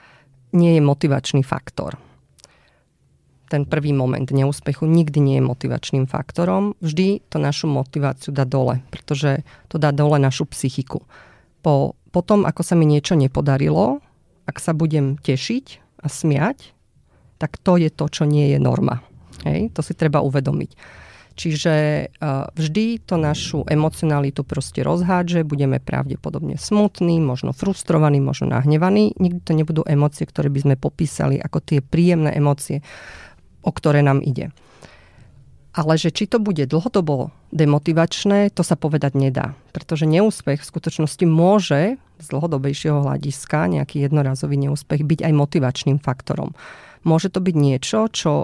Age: 40-59